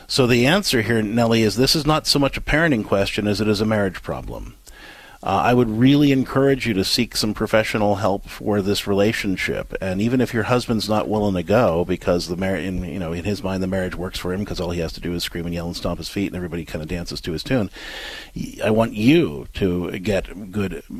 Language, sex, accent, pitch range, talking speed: English, male, American, 95-120 Hz, 245 wpm